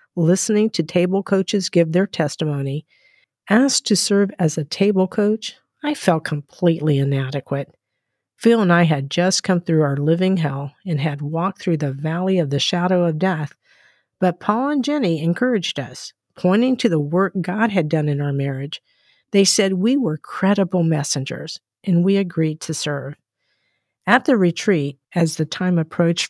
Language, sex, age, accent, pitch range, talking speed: English, female, 50-69, American, 155-195 Hz, 165 wpm